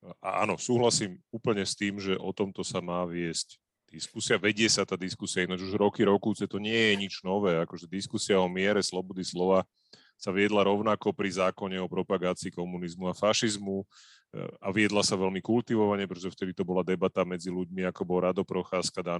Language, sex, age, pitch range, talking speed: Slovak, male, 30-49, 95-115 Hz, 180 wpm